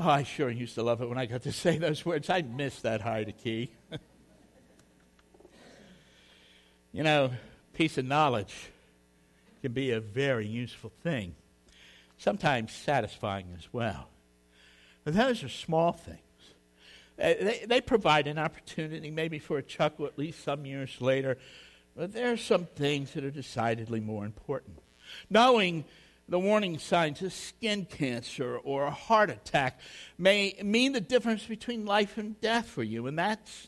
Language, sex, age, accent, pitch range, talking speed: English, male, 60-79, American, 115-195 Hz, 155 wpm